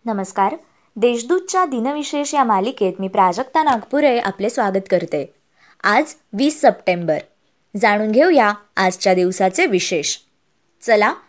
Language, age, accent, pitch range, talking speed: Marathi, 20-39, native, 210-290 Hz, 105 wpm